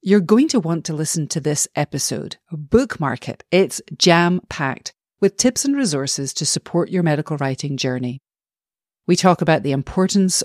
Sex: female